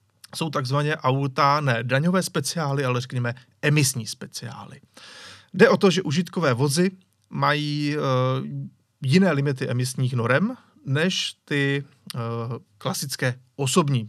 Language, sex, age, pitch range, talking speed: Czech, male, 30-49, 130-155 Hz, 110 wpm